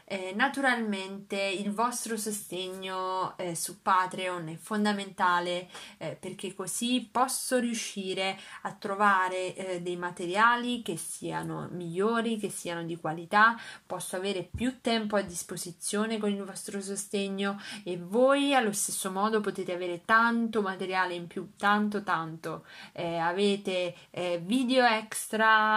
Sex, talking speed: female, 125 wpm